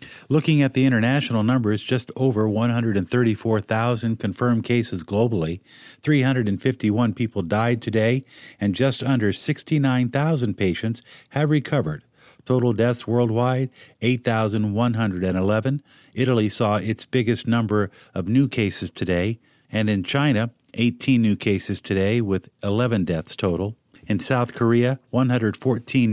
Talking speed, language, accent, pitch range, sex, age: 115 wpm, English, American, 105-130 Hz, male, 50-69